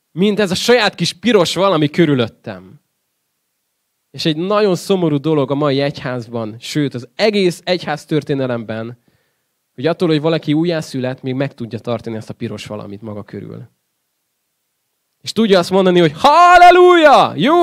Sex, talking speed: male, 145 wpm